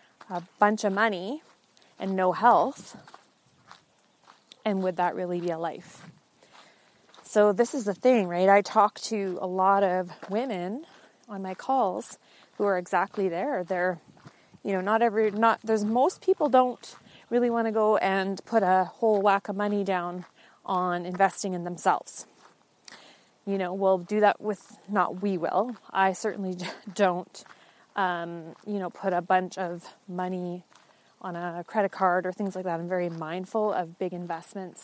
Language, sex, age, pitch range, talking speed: English, female, 30-49, 180-210 Hz, 160 wpm